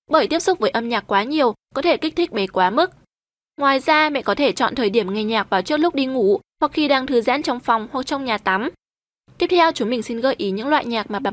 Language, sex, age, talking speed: Vietnamese, female, 20-39, 280 wpm